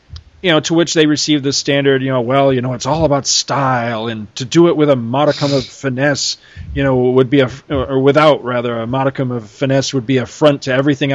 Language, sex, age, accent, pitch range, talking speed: English, male, 40-59, American, 125-165 Hz, 235 wpm